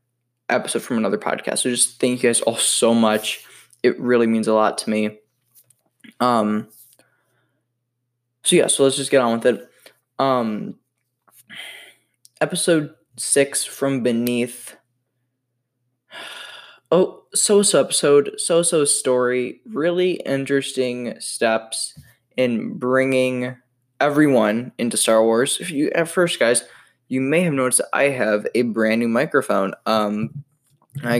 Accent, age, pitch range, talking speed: American, 10-29, 115-140 Hz, 130 wpm